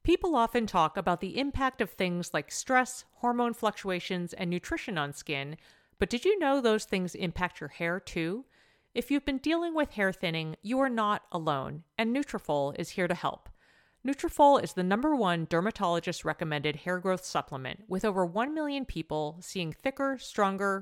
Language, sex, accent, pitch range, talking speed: English, female, American, 165-240 Hz, 175 wpm